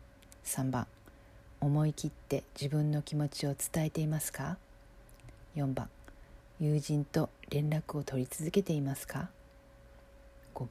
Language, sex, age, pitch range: Japanese, female, 40-59, 120-155 Hz